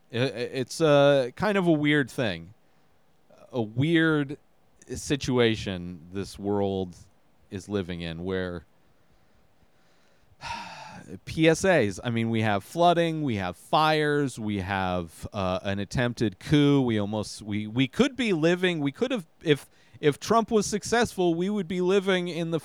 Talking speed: 140 wpm